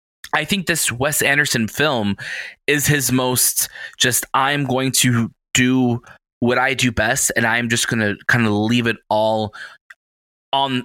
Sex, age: male, 20-39